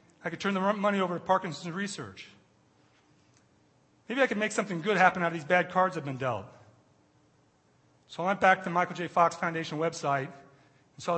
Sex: male